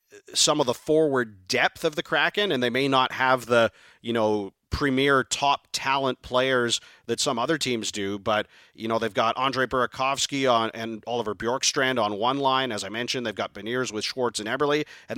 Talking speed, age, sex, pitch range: 200 wpm, 40-59, male, 115-140 Hz